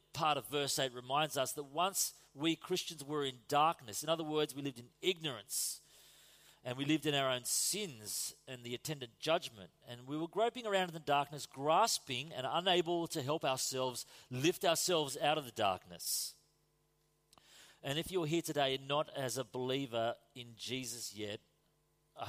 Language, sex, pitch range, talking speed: English, male, 125-155 Hz, 170 wpm